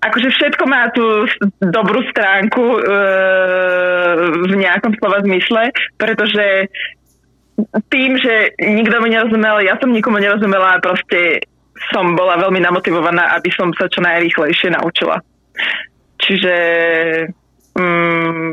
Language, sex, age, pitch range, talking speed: Slovak, female, 20-39, 175-210 Hz, 115 wpm